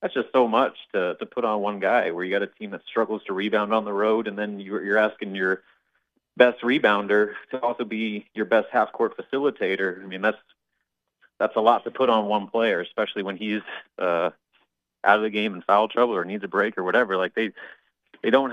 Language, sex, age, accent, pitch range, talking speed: English, male, 30-49, American, 95-125 Hz, 225 wpm